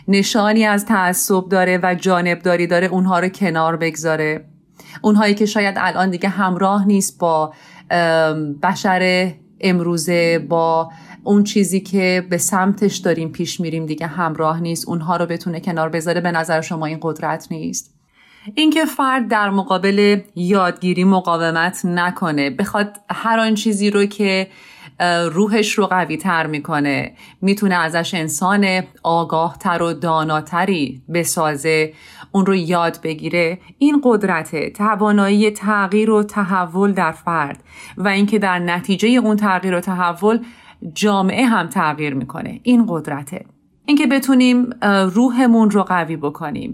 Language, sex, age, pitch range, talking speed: Persian, female, 30-49, 165-205 Hz, 130 wpm